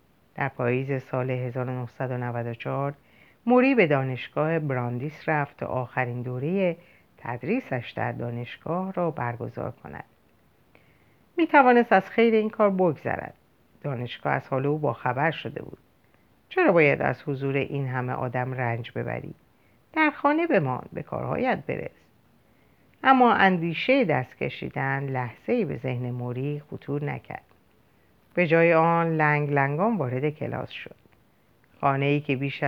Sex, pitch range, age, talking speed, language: female, 130-185 Hz, 50-69, 125 wpm, Persian